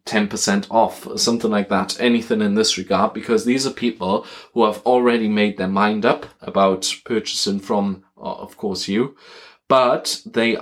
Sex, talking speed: male, 160 wpm